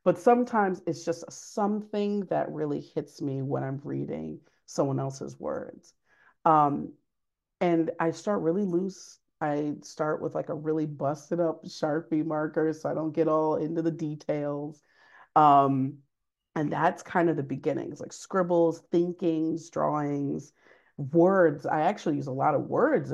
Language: English